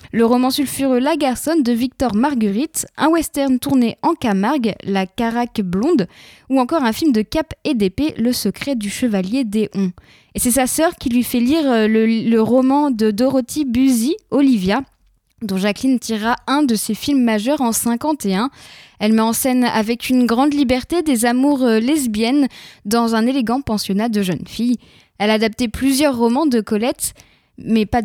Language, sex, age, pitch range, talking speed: French, female, 20-39, 220-275 Hz, 190 wpm